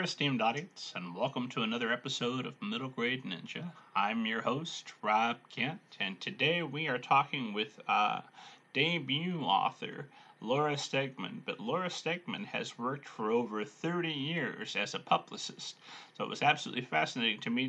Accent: American